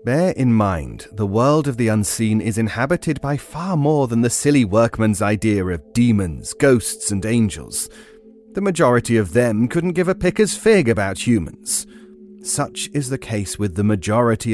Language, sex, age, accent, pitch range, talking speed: English, male, 30-49, British, 100-140 Hz, 170 wpm